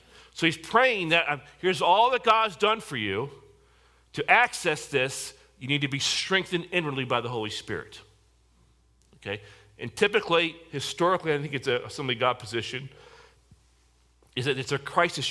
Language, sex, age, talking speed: English, male, 40-59, 155 wpm